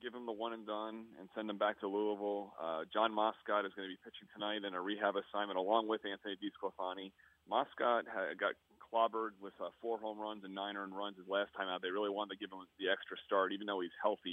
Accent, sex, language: American, male, English